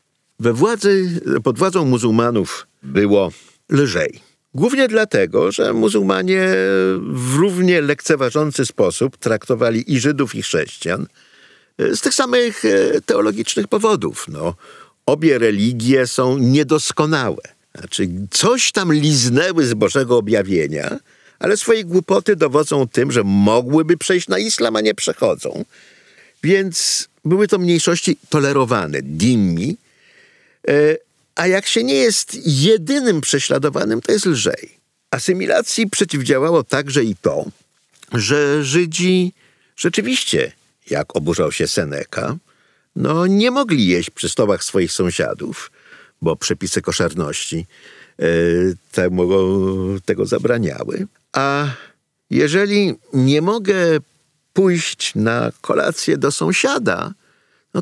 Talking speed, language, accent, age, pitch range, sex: 105 wpm, Polish, native, 50-69, 125-200 Hz, male